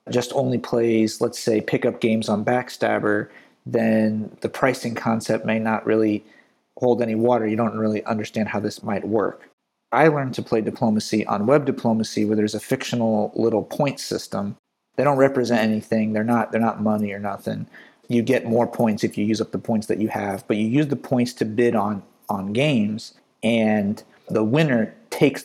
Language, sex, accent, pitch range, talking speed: English, male, American, 105-120 Hz, 190 wpm